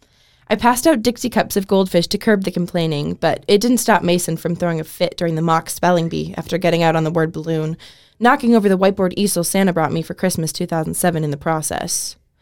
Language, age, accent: English, 20-39, American